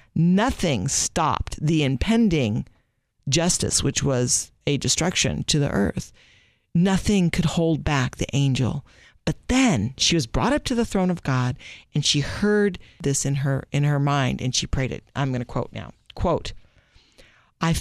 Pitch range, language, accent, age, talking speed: 135-180 Hz, English, American, 50-69, 165 wpm